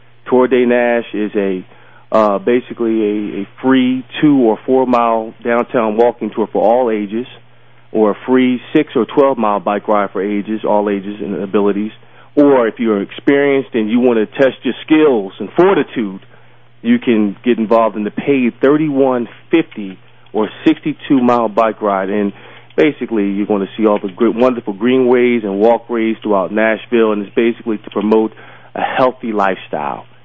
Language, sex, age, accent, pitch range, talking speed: English, male, 30-49, American, 100-120 Hz, 165 wpm